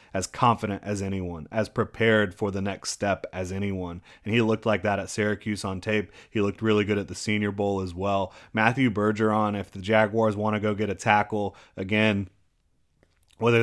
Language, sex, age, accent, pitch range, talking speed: English, male, 30-49, American, 95-110 Hz, 195 wpm